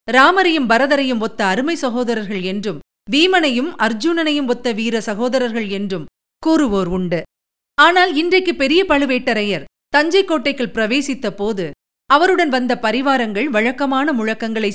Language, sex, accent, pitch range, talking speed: Tamil, female, native, 205-290 Hz, 110 wpm